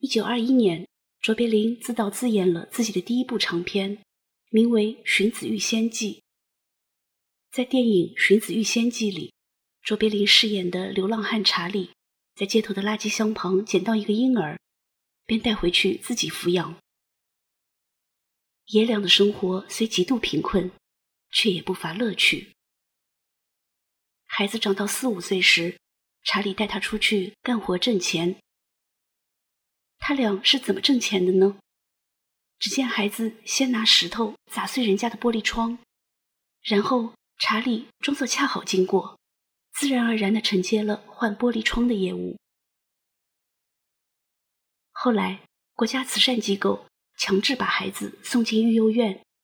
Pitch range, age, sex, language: 195-235 Hz, 30-49, female, Chinese